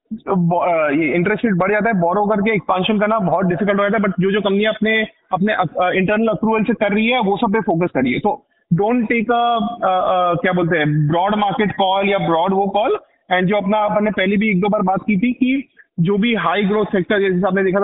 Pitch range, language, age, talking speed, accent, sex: 195-230 Hz, Hindi, 30-49, 205 wpm, native, male